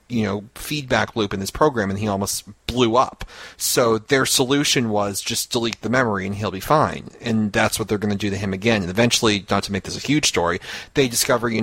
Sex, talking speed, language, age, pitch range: male, 235 wpm, English, 30-49, 105-120 Hz